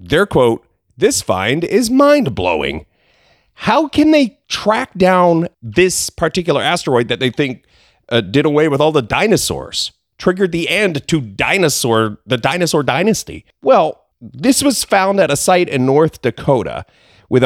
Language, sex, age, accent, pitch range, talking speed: English, male, 40-59, American, 120-185 Hz, 150 wpm